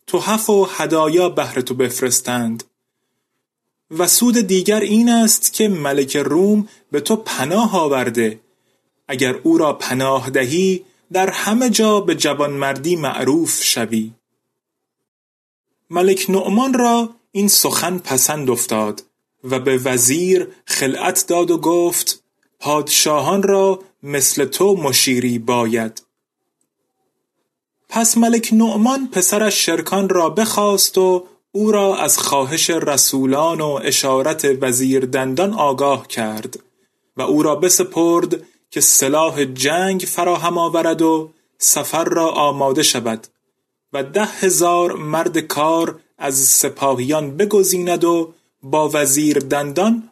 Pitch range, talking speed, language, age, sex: 140-195 Hz, 115 wpm, Persian, 30-49, male